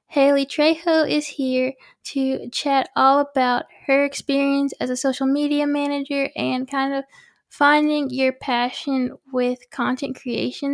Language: English